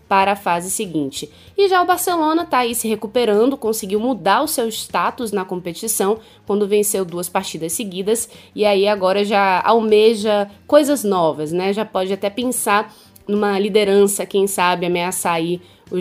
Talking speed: 160 wpm